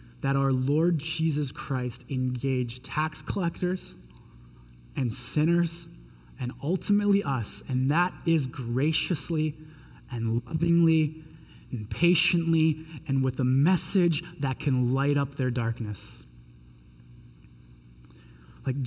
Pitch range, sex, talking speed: 135-195 Hz, male, 100 wpm